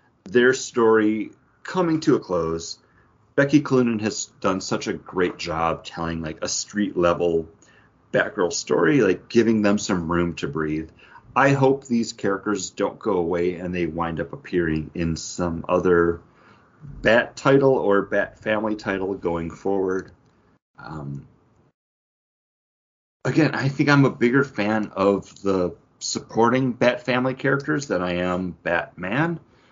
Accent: American